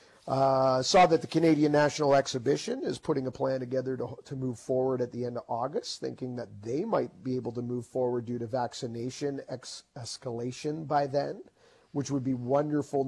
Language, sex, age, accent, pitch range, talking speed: English, male, 40-59, American, 125-150 Hz, 185 wpm